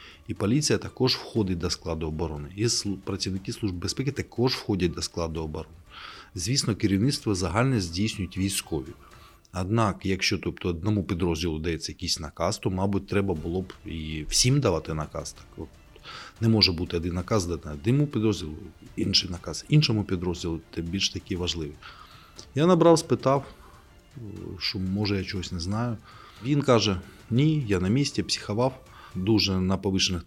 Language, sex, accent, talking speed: Ukrainian, male, native, 150 wpm